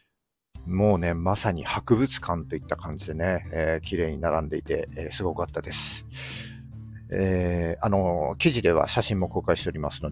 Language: Japanese